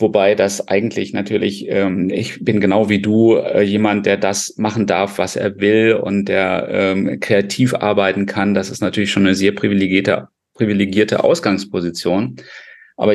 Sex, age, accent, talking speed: male, 40-59, German, 160 wpm